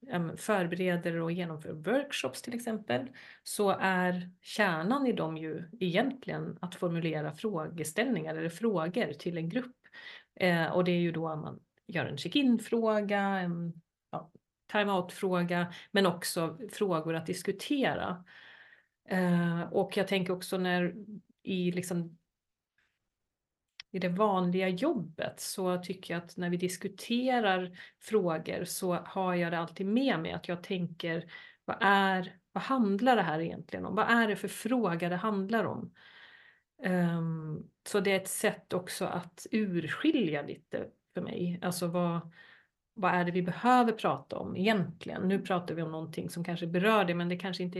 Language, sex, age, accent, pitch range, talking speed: Swedish, female, 30-49, native, 170-210 Hz, 150 wpm